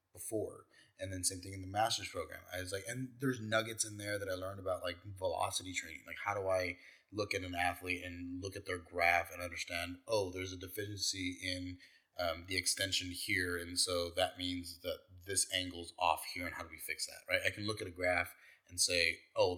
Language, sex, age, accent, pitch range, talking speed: English, male, 30-49, American, 90-105 Hz, 225 wpm